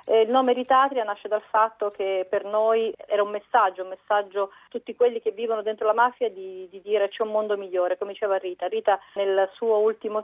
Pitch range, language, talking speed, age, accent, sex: 190-225 Hz, Italian, 210 wpm, 40-59, native, female